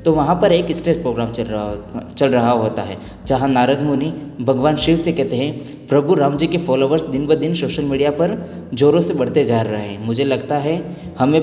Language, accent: Hindi, native